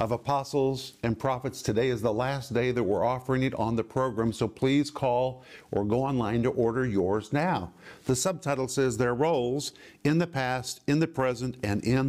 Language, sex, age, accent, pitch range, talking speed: English, male, 50-69, American, 115-135 Hz, 195 wpm